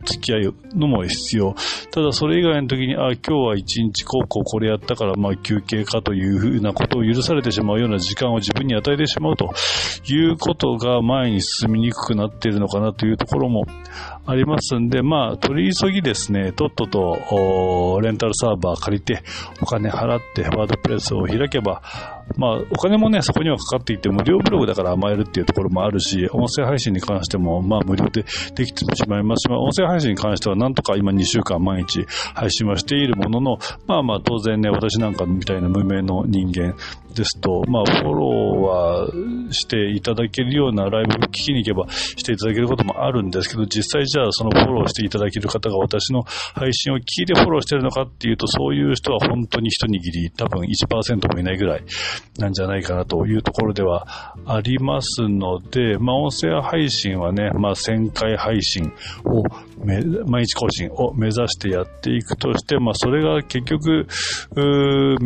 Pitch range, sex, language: 100-125 Hz, male, Japanese